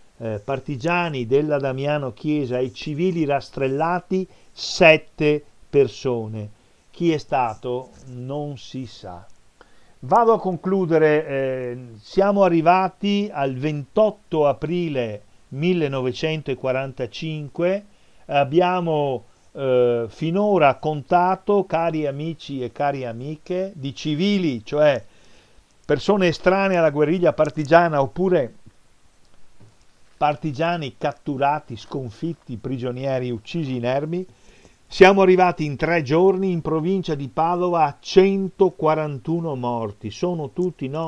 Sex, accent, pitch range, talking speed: male, native, 125-170 Hz, 95 wpm